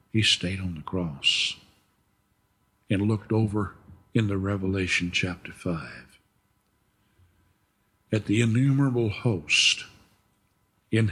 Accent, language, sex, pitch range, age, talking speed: American, English, male, 90-100 Hz, 60-79, 95 wpm